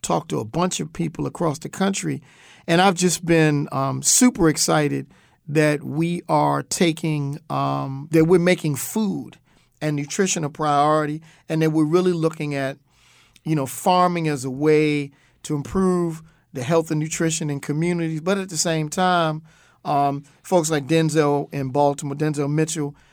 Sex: male